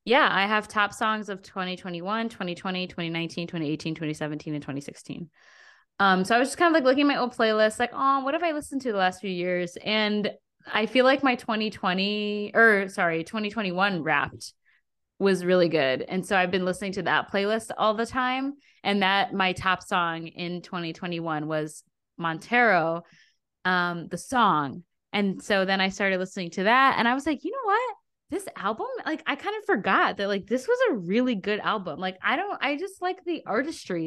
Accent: American